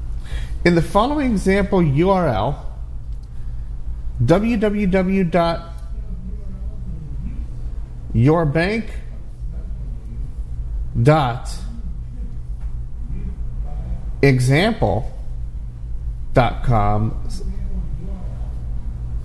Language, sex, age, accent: English, male, 40-59, American